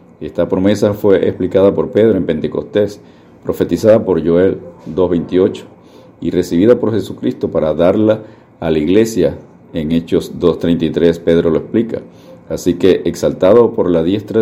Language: Spanish